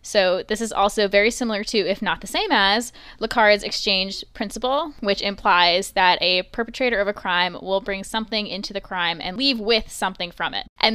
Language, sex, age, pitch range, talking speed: English, female, 10-29, 190-225 Hz, 195 wpm